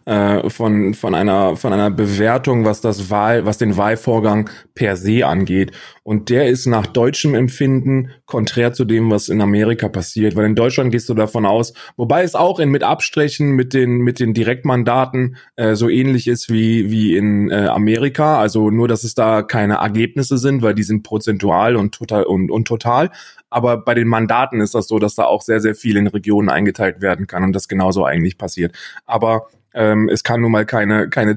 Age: 20-39